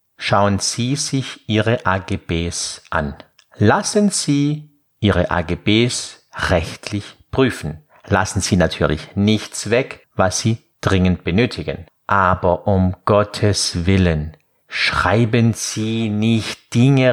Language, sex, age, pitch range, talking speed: German, male, 50-69, 95-125 Hz, 100 wpm